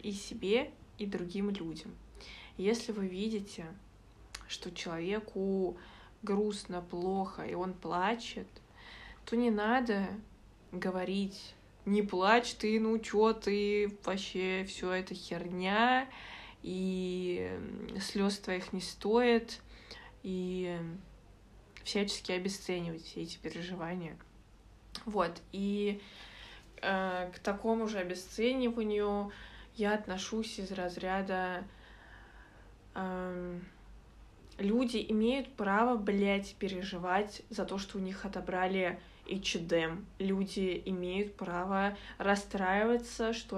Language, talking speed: Russian, 95 wpm